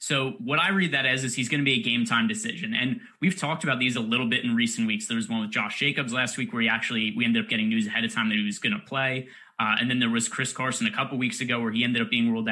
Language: English